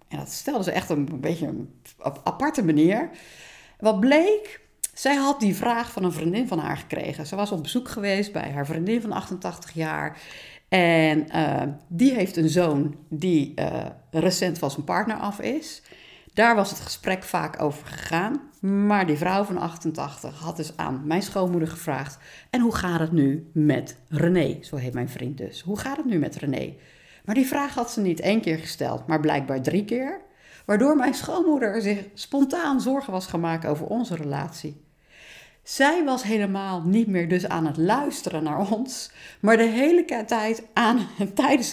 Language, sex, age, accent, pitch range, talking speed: Dutch, female, 50-69, Dutch, 160-230 Hz, 180 wpm